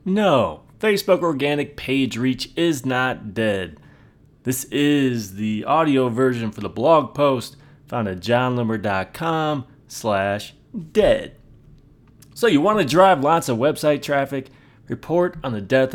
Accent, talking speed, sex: American, 130 wpm, male